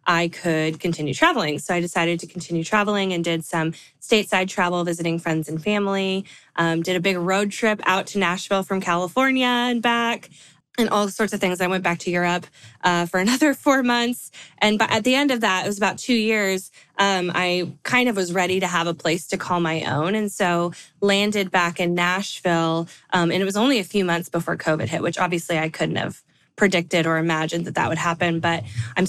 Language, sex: English, female